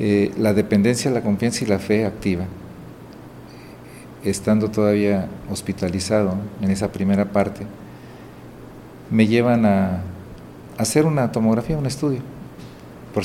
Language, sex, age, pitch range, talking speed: Spanish, male, 50-69, 100-125 Hz, 115 wpm